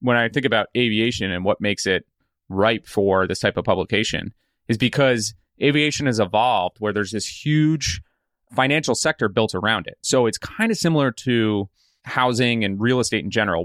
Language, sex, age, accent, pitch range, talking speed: English, male, 30-49, American, 100-125 Hz, 180 wpm